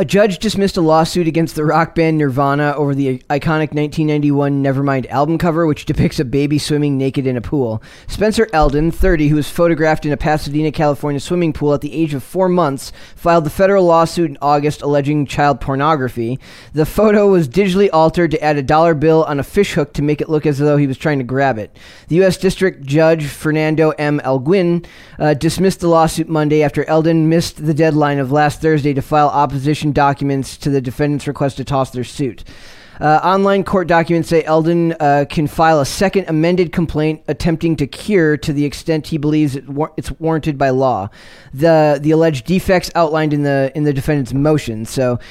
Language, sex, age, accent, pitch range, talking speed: English, male, 20-39, American, 145-165 Hz, 200 wpm